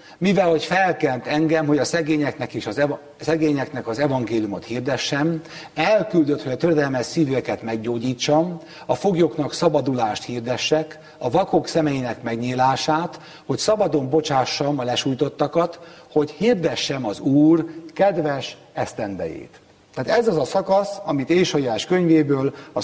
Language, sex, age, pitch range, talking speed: Hungarian, male, 60-79, 145-175 Hz, 125 wpm